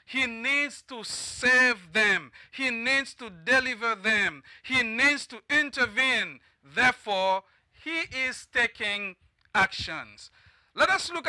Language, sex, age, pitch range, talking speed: English, male, 50-69, 215-275 Hz, 115 wpm